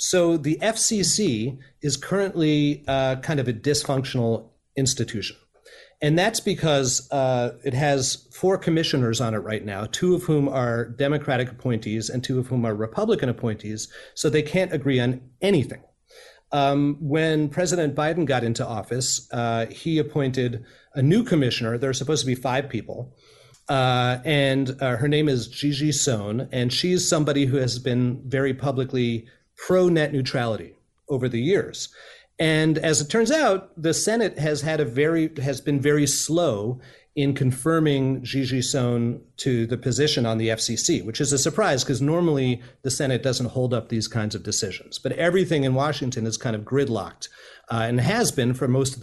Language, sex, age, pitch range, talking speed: English, male, 40-59, 125-155 Hz, 170 wpm